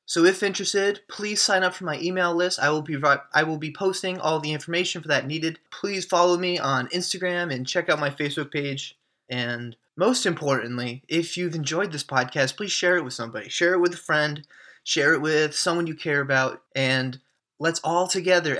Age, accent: 20-39, American